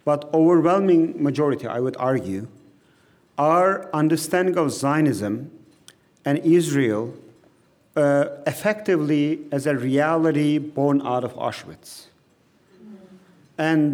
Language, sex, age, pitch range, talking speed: English, male, 40-59, 145-190 Hz, 95 wpm